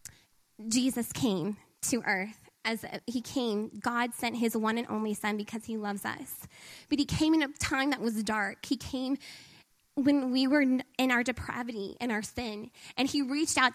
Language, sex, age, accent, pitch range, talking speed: English, female, 10-29, American, 230-280 Hz, 185 wpm